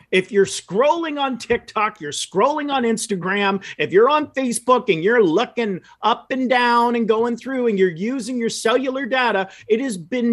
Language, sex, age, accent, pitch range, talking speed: English, male, 40-59, American, 195-260 Hz, 180 wpm